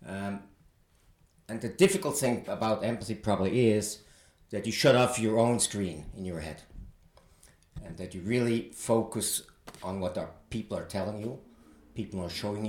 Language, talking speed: German, 160 wpm